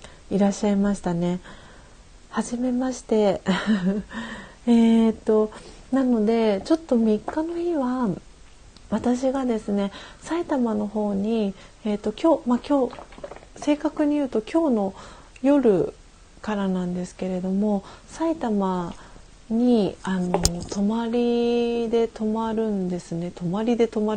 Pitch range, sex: 195-245 Hz, female